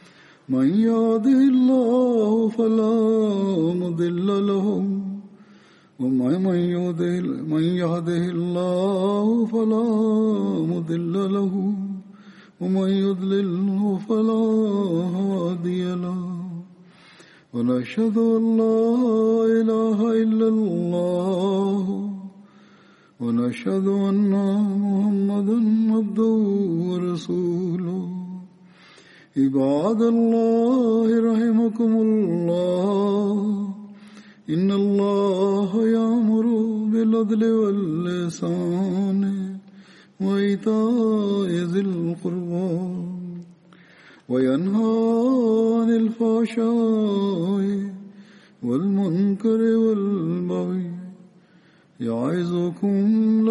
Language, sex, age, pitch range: Tamil, male, 50-69, 180-220 Hz